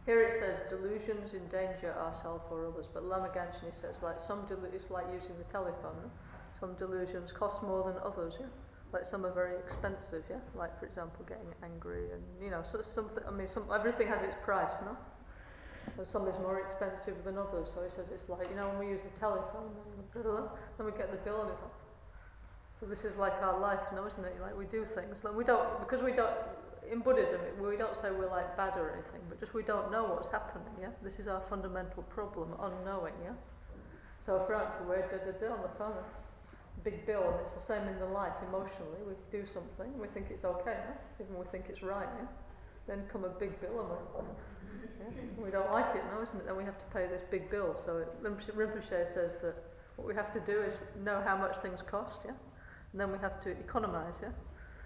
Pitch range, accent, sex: 185-215 Hz, British, female